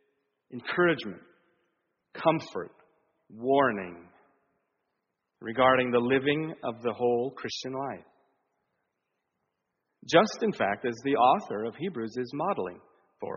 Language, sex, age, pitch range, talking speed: English, male, 40-59, 95-135 Hz, 100 wpm